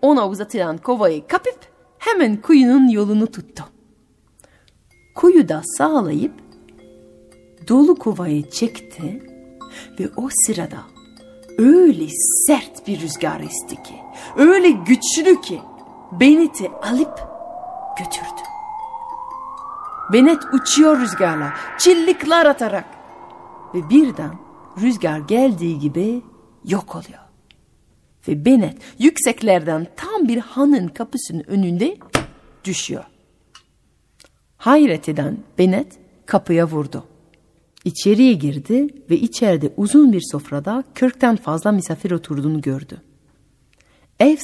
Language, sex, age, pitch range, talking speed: Turkish, female, 40-59, 185-305 Hz, 90 wpm